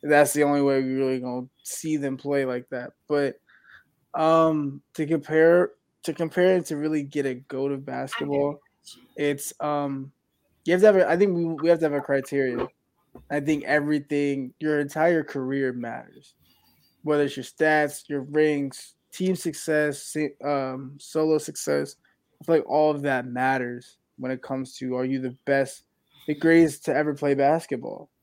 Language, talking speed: English, 170 wpm